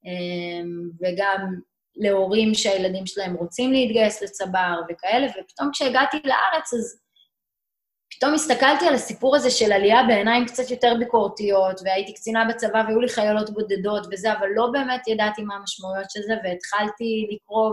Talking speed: 140 wpm